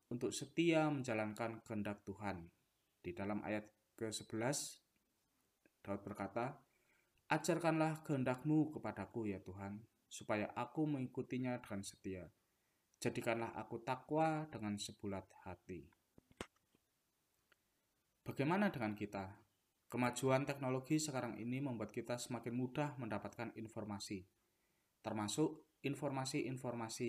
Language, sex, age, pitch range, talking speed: Indonesian, male, 20-39, 110-135 Hz, 95 wpm